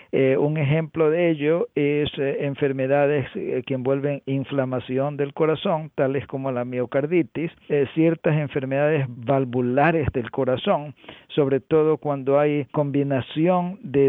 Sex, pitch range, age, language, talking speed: male, 135-160 Hz, 50-69, English, 130 wpm